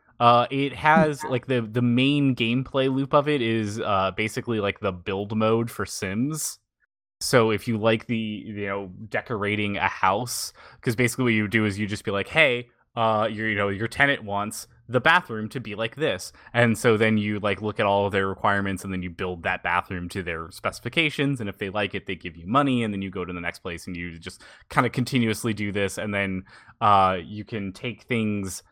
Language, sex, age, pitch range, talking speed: English, male, 20-39, 95-115 Hz, 220 wpm